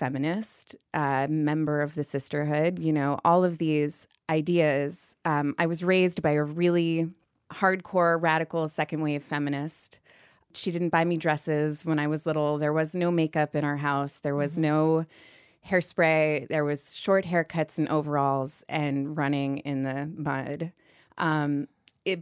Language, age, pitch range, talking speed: English, 20-39, 150-180 Hz, 150 wpm